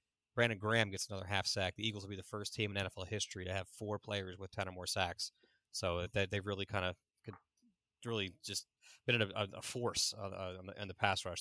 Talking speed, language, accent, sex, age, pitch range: 225 wpm, English, American, male, 30-49, 100-115 Hz